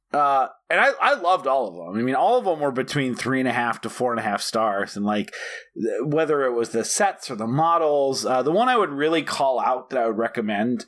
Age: 30-49